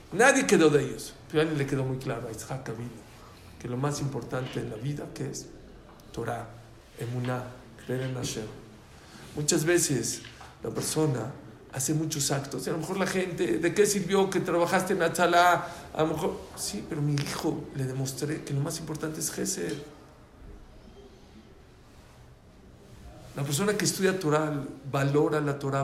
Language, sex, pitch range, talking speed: English, male, 135-195 Hz, 160 wpm